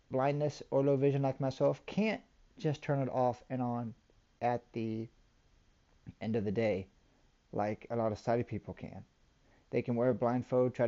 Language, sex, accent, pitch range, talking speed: English, male, American, 115-145 Hz, 175 wpm